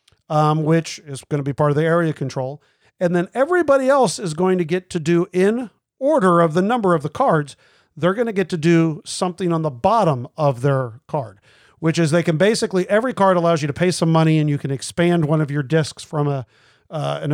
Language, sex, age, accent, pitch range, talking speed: English, male, 50-69, American, 145-180 Hz, 230 wpm